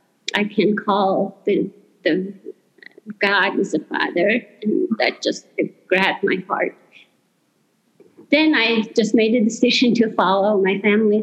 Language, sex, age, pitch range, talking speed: English, female, 30-49, 195-230 Hz, 135 wpm